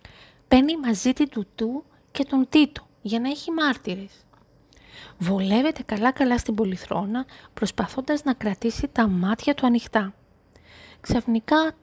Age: 30-49